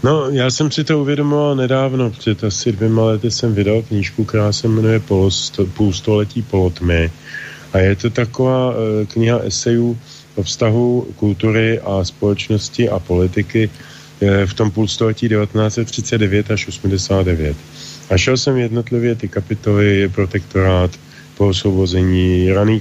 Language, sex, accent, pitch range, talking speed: English, male, Czech, 95-115 Hz, 130 wpm